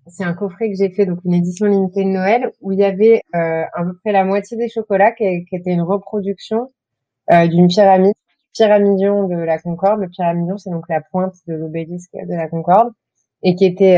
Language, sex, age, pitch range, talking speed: French, female, 30-49, 170-195 Hz, 220 wpm